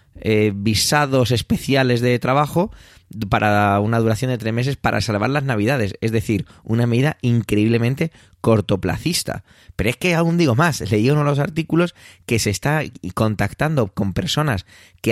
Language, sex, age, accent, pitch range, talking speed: Spanish, male, 20-39, Spanish, 100-130 Hz, 155 wpm